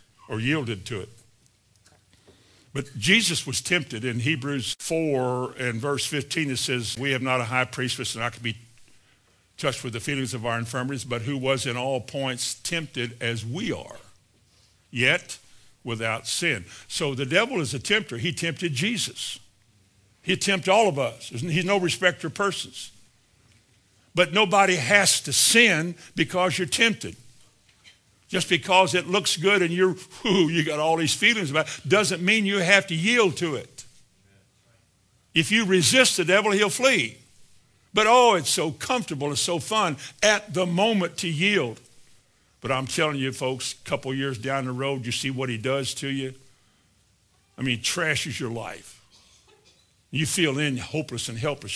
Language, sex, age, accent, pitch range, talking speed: English, male, 60-79, American, 115-175 Hz, 165 wpm